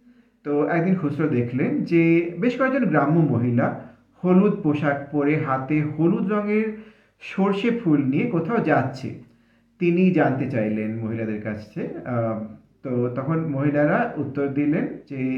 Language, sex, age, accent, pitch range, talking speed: Bengali, male, 50-69, native, 130-185 Hz, 105 wpm